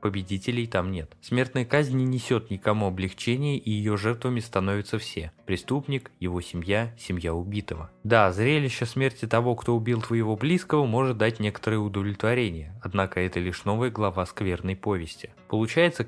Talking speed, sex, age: 150 wpm, male, 20-39